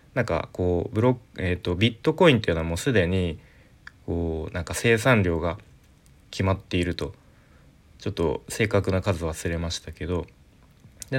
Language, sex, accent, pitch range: Japanese, male, native, 85-105 Hz